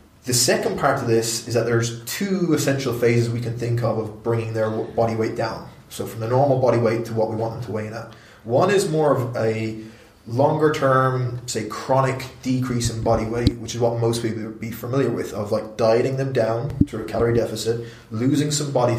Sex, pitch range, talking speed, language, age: male, 115-130 Hz, 220 wpm, English, 20-39